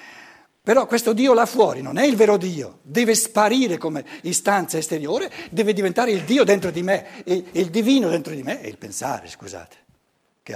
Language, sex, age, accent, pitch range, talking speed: Italian, male, 60-79, native, 170-230 Hz, 190 wpm